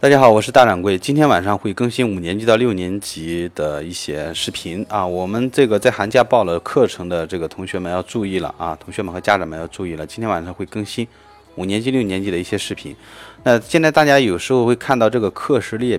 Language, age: Chinese, 20-39